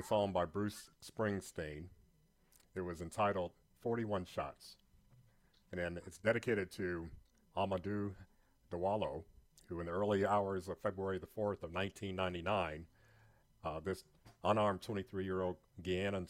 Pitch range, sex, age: 90-110 Hz, male, 50-69